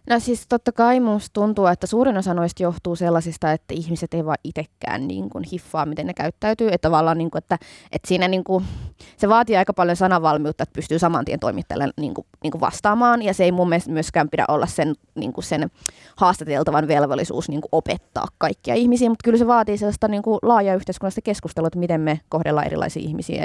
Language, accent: Finnish, native